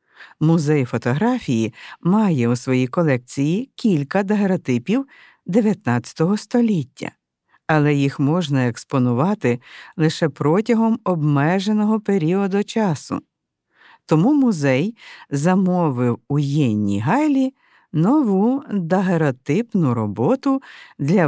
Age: 50-69